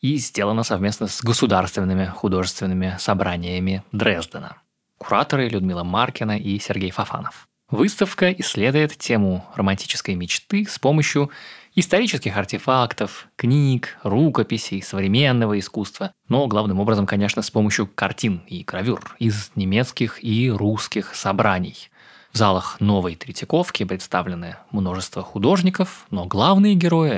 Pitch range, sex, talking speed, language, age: 100-140 Hz, male, 115 wpm, Russian, 20-39